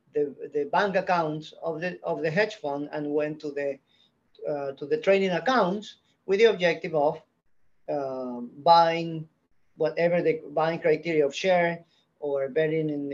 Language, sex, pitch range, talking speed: English, male, 150-195 Hz, 155 wpm